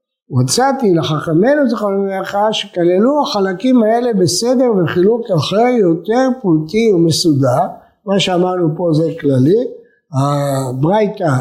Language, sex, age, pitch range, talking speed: Hebrew, male, 60-79, 155-215 Hz, 100 wpm